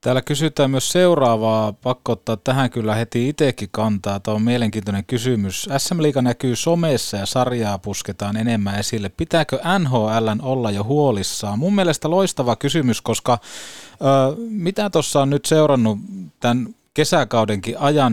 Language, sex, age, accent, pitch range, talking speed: Finnish, male, 30-49, native, 105-130 Hz, 140 wpm